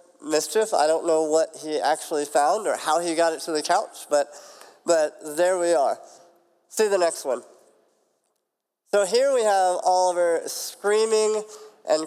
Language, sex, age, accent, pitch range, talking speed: English, male, 30-49, American, 150-185 Hz, 160 wpm